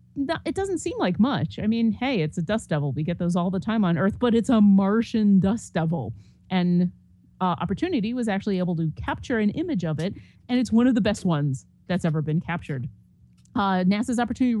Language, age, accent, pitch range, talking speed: English, 30-49, American, 165-215 Hz, 215 wpm